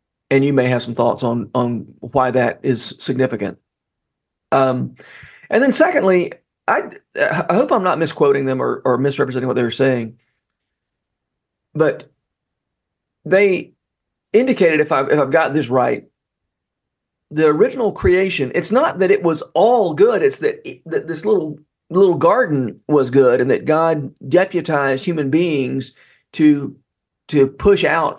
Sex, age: male, 40-59